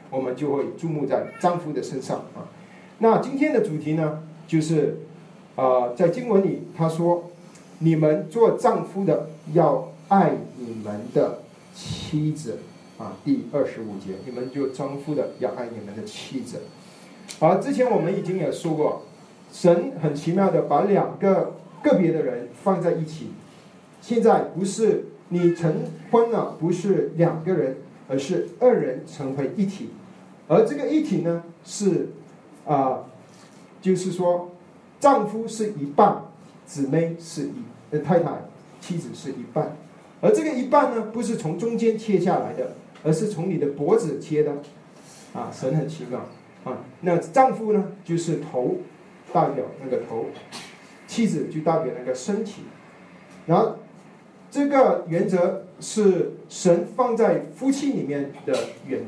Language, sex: Chinese, male